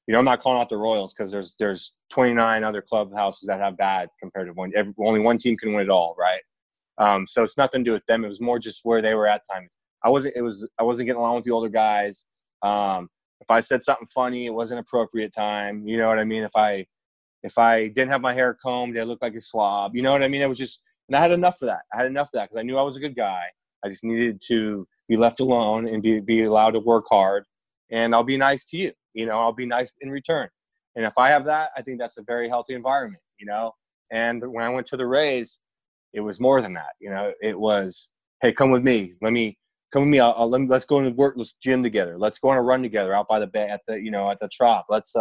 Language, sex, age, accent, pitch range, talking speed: English, male, 20-39, American, 105-125 Hz, 280 wpm